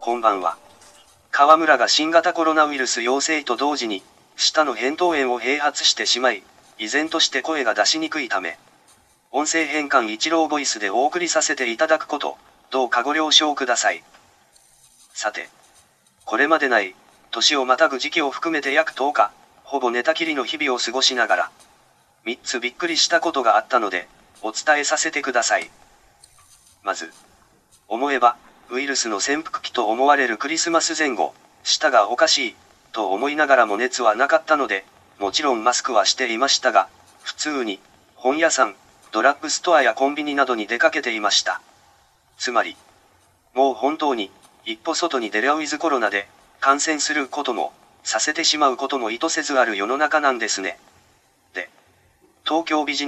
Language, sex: Japanese, male